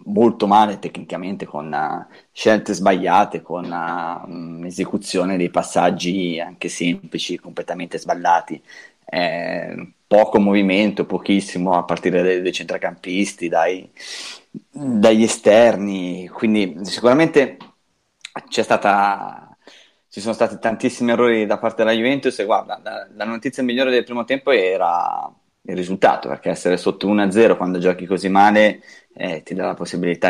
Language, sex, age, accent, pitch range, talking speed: Italian, male, 20-39, native, 90-105 Hz, 130 wpm